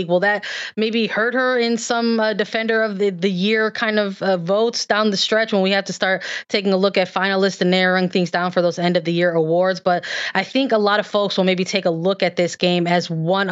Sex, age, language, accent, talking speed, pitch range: female, 20-39, English, American, 255 wpm, 175-215 Hz